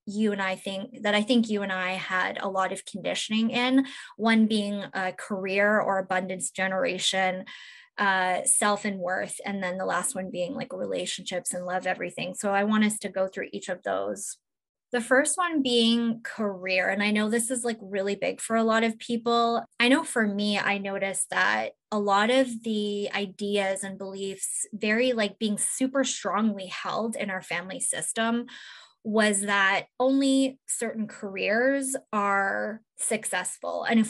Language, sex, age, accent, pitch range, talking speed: English, female, 10-29, American, 195-225 Hz, 175 wpm